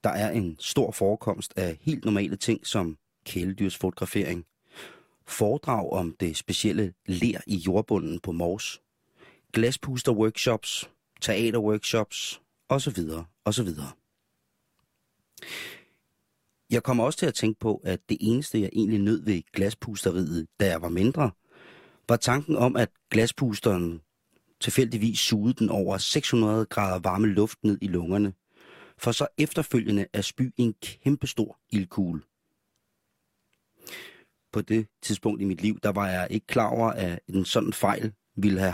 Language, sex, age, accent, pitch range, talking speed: Danish, male, 30-49, native, 95-120 Hz, 130 wpm